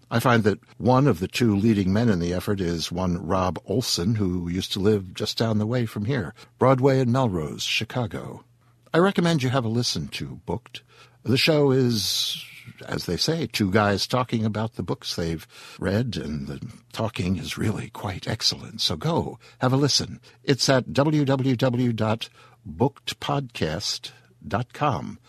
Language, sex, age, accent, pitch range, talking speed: English, male, 60-79, American, 100-125 Hz, 160 wpm